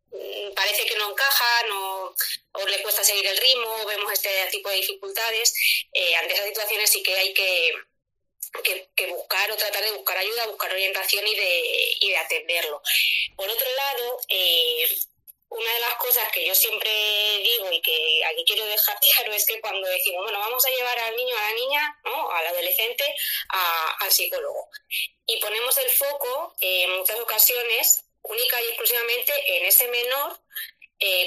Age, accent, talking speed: 20-39, Spanish, 175 wpm